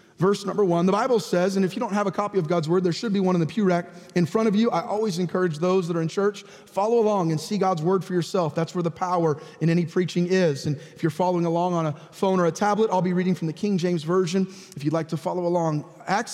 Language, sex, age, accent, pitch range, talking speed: English, male, 30-49, American, 175-215 Hz, 285 wpm